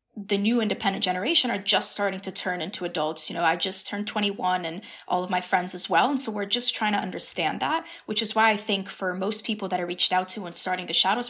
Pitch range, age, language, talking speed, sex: 180-220 Hz, 20-39, English, 260 wpm, female